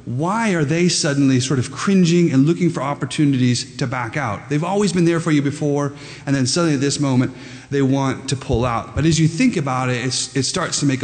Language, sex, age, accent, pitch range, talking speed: English, male, 30-49, American, 120-155 Hz, 235 wpm